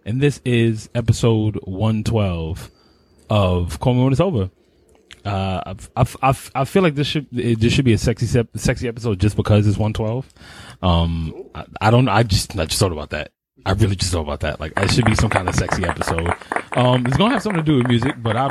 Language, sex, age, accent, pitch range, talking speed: English, male, 20-39, American, 105-135 Hz, 230 wpm